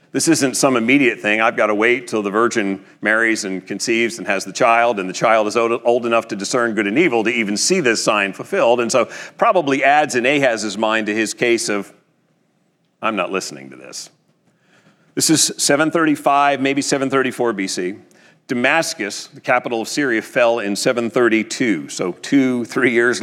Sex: male